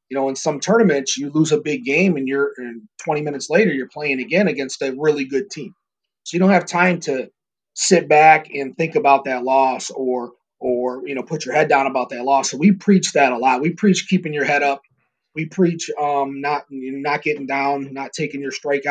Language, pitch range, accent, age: English, 135-170 Hz, American, 30-49